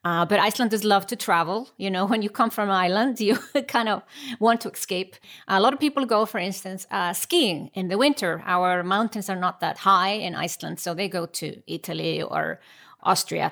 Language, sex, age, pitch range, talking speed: English, female, 30-49, 175-220 Hz, 210 wpm